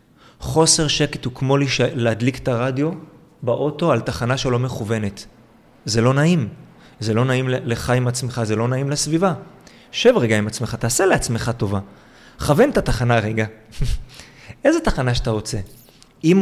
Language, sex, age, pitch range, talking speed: Hebrew, male, 30-49, 120-160 Hz, 150 wpm